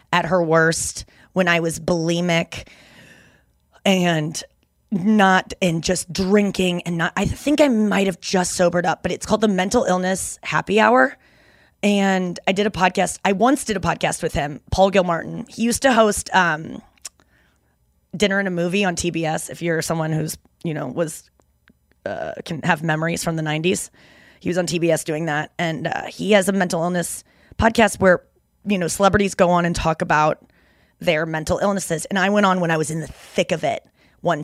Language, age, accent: English, 20-39, American